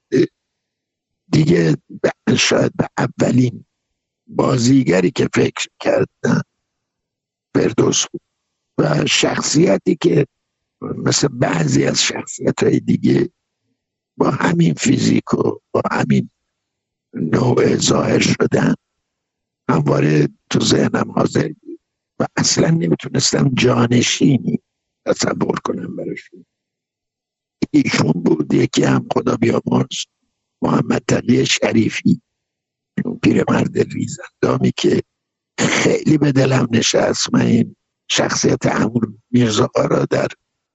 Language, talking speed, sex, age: Persian, 90 wpm, male, 60-79